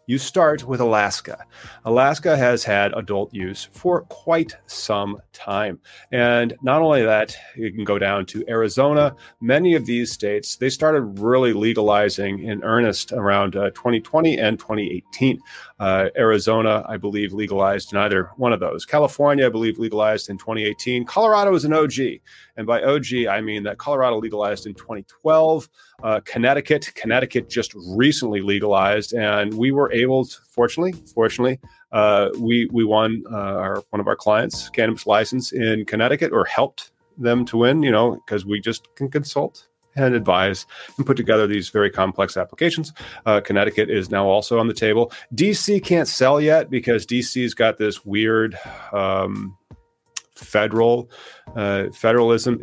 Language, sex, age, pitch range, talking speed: English, male, 30-49, 105-130 Hz, 155 wpm